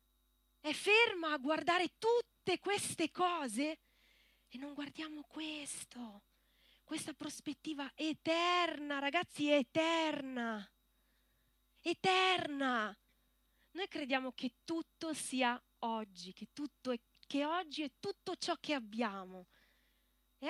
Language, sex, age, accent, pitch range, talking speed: Italian, female, 20-39, native, 205-305 Hz, 100 wpm